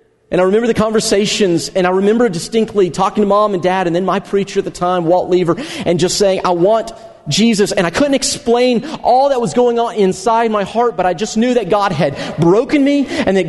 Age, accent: 40-59, American